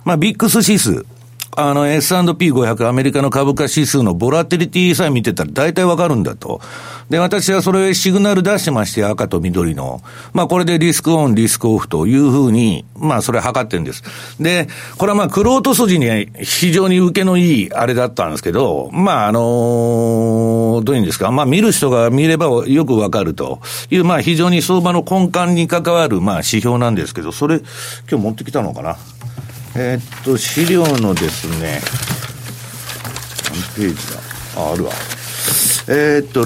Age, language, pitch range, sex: 60-79, Japanese, 120-170 Hz, male